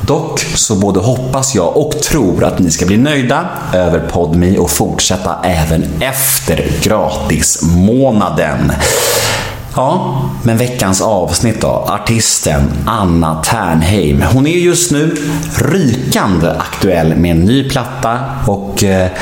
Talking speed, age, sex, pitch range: 120 wpm, 30-49, male, 90-135 Hz